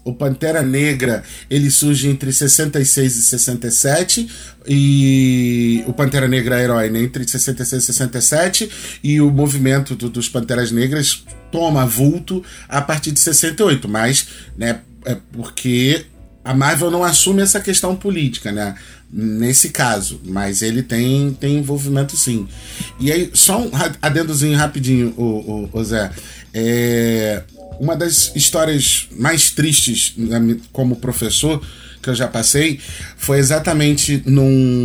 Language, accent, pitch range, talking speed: Portuguese, Brazilian, 115-145 Hz, 135 wpm